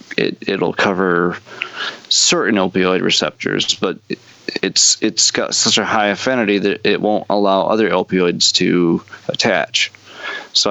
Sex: male